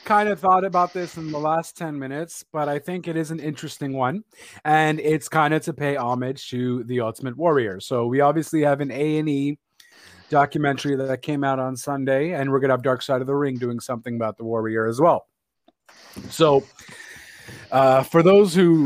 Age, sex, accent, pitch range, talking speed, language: 30-49, male, American, 130-170 Hz, 195 wpm, English